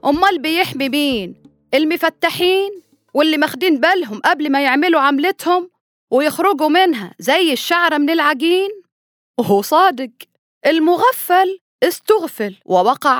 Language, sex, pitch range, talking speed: Arabic, female, 205-310 Hz, 100 wpm